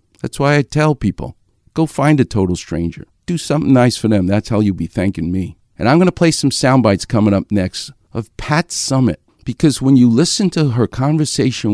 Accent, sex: American, male